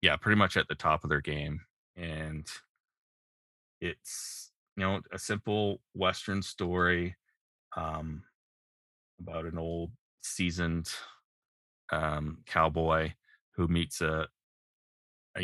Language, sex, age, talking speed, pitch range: English, male, 20-39, 110 wpm, 80-95 Hz